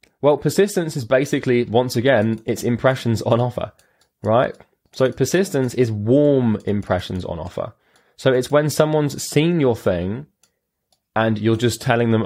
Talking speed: 145 wpm